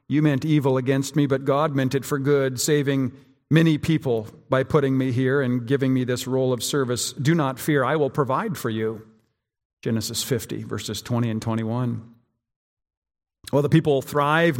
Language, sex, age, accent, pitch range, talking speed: English, male, 50-69, American, 125-150 Hz, 175 wpm